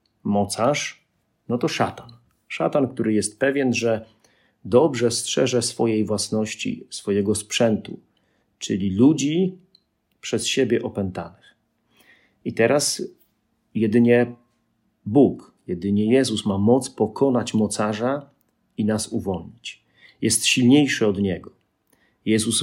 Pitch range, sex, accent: 100-120 Hz, male, native